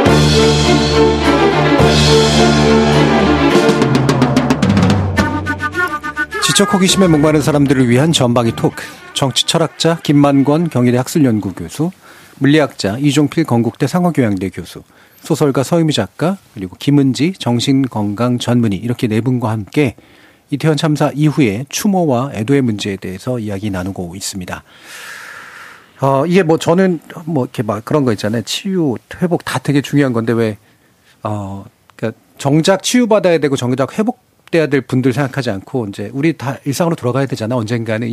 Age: 40-59